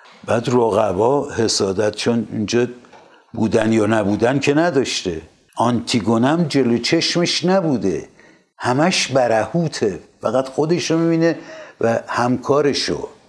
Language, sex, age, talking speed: Persian, male, 60-79, 95 wpm